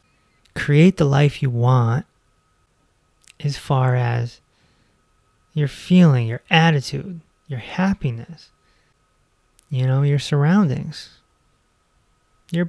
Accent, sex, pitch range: American, male, 115-145 Hz